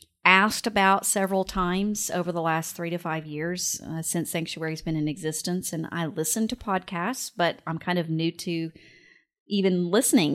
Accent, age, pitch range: American, 30-49, 170-205 Hz